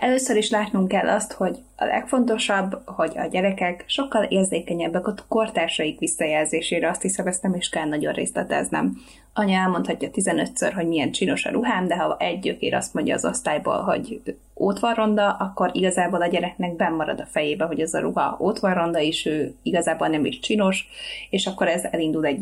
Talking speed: 190 wpm